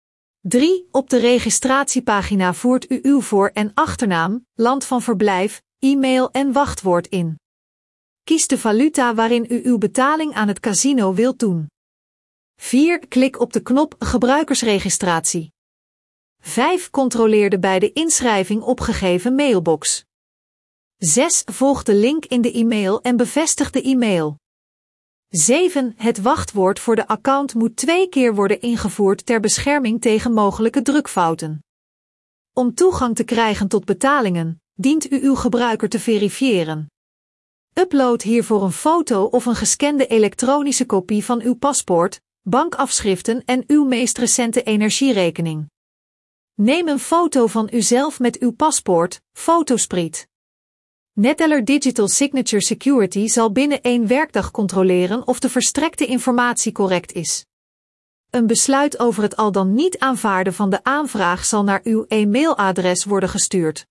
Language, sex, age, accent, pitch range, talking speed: Dutch, female, 40-59, Dutch, 195-265 Hz, 130 wpm